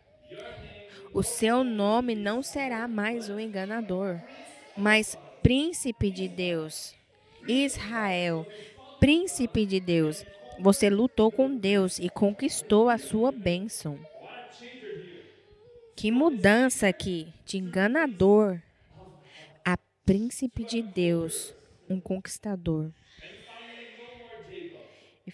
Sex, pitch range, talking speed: female, 175-225 Hz, 90 wpm